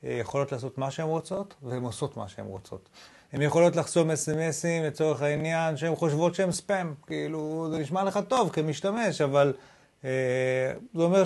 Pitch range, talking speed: 145-190 Hz, 160 wpm